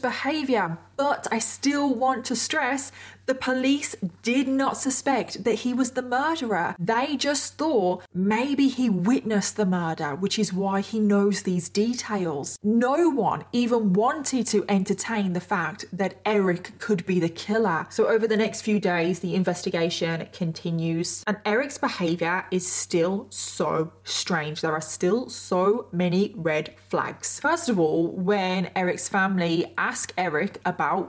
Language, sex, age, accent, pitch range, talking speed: English, female, 20-39, British, 175-230 Hz, 150 wpm